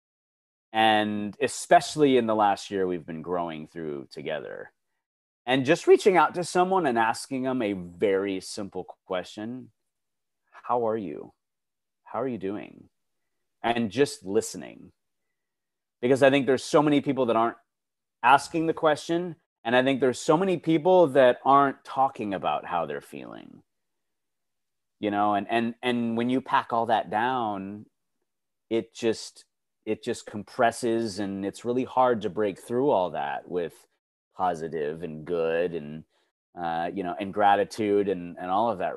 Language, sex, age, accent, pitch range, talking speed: English, male, 30-49, American, 95-130 Hz, 155 wpm